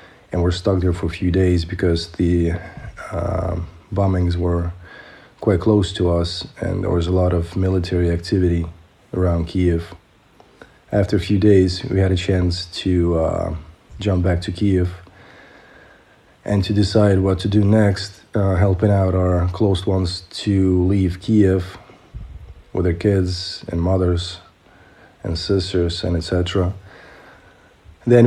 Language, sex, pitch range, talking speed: Ukrainian, male, 90-100 Hz, 140 wpm